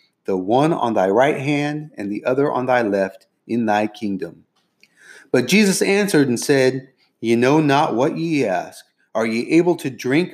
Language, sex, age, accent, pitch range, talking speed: English, male, 30-49, American, 115-160 Hz, 180 wpm